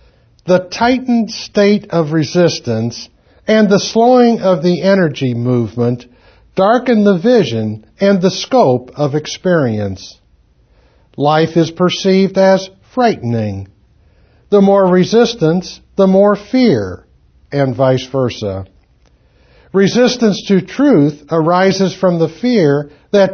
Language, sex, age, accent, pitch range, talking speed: English, male, 60-79, American, 130-195 Hz, 110 wpm